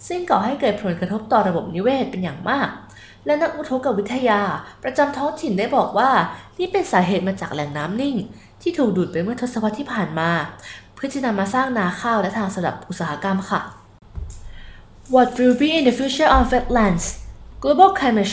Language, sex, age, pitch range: Thai, female, 20-39, 175-240 Hz